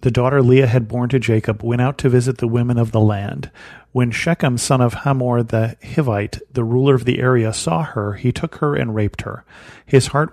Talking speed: 220 wpm